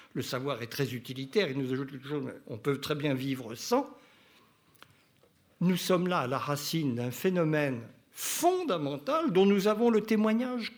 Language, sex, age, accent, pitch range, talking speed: French, male, 60-79, French, 140-215 Hz, 160 wpm